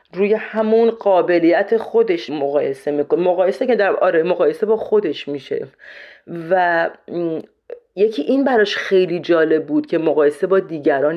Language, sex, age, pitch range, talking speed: Persian, female, 40-59, 155-220 Hz, 135 wpm